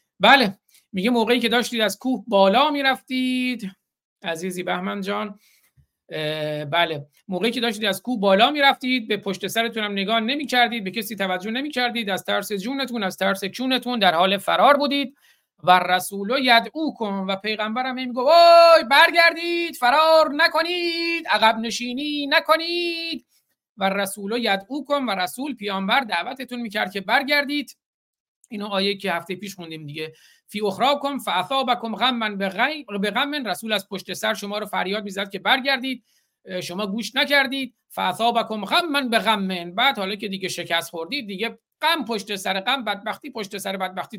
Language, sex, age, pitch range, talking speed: Persian, male, 50-69, 195-260 Hz, 150 wpm